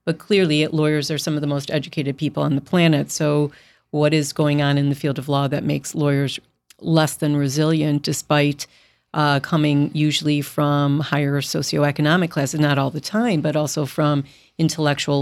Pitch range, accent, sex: 145-165 Hz, American, female